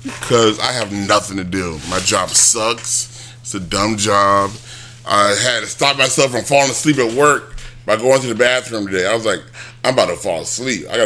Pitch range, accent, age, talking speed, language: 115-135 Hz, American, 30-49, 210 wpm, English